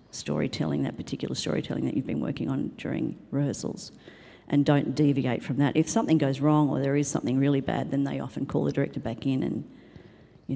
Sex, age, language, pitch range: female, 50-69, English, 135-160 Hz